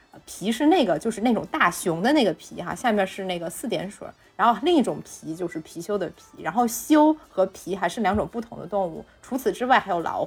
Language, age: Chinese, 20-39